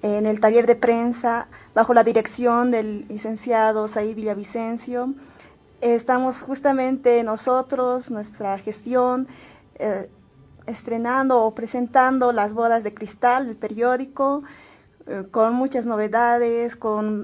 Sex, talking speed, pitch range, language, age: female, 110 wpm, 215-250 Hz, Spanish, 20-39